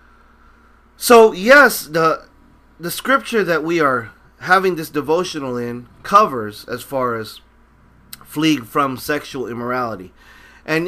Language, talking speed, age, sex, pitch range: English, 115 wpm, 30-49, male, 135-205 Hz